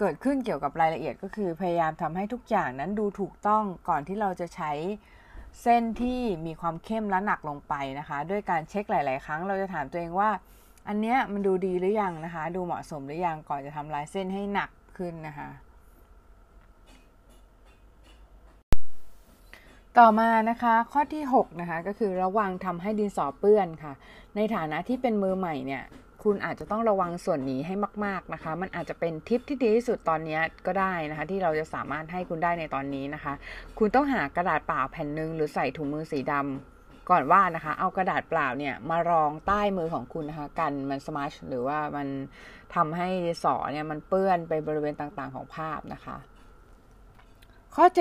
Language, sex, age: Thai, female, 20-39